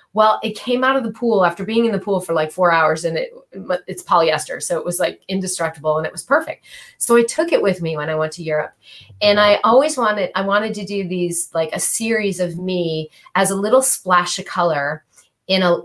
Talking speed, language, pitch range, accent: 230 wpm, English, 165-200 Hz, American